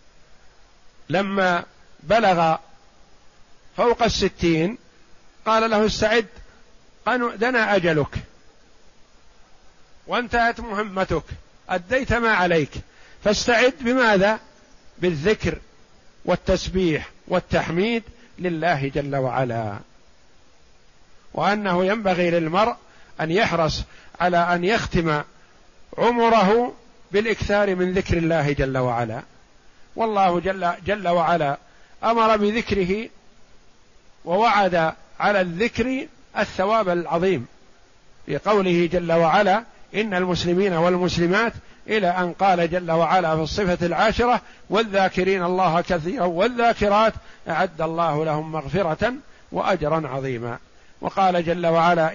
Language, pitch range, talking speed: Arabic, 165-210 Hz, 85 wpm